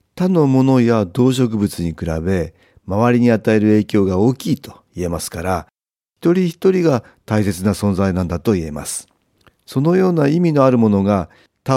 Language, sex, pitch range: Japanese, male, 90-130 Hz